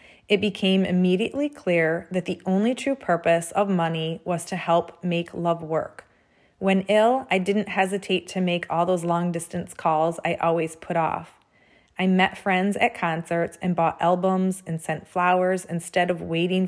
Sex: female